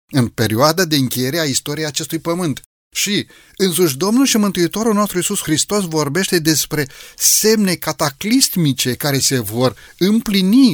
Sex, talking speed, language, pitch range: male, 135 wpm, Romanian, 130-170 Hz